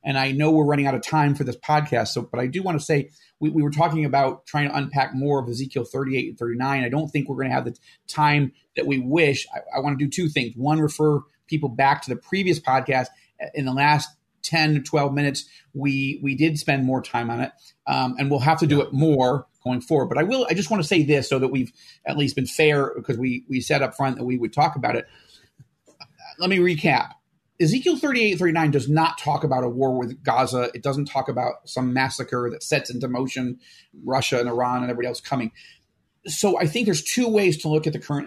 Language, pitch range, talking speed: English, 130-155 Hz, 250 wpm